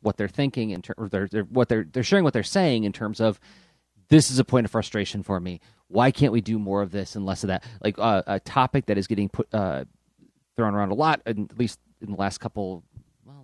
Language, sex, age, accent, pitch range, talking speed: English, male, 30-49, American, 90-115 Hz, 260 wpm